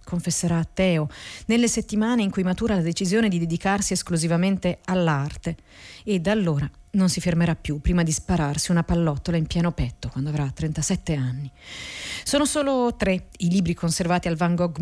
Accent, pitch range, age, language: native, 160-200 Hz, 40-59, Italian